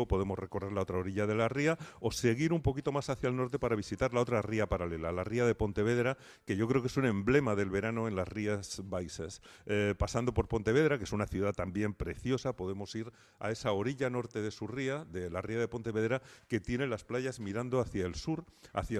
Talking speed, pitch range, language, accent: 225 wpm, 100-120 Hz, Spanish, Spanish